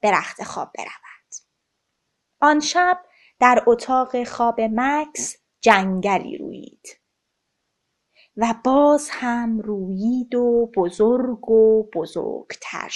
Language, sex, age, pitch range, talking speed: Persian, female, 30-49, 215-295 Hz, 90 wpm